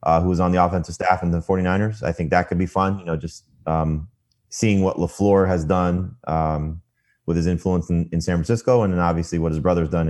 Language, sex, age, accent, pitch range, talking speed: English, male, 30-49, American, 90-115 Hz, 240 wpm